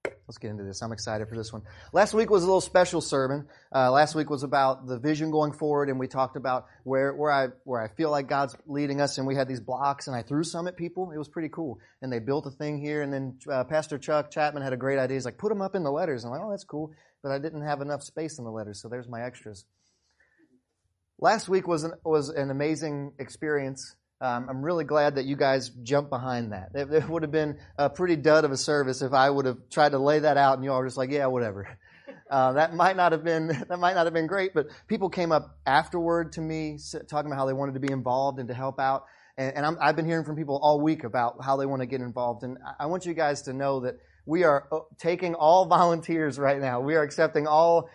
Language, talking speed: English, 265 wpm